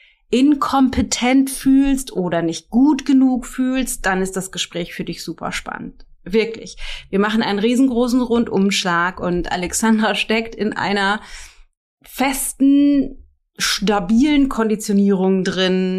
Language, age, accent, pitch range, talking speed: German, 30-49, German, 185-230 Hz, 115 wpm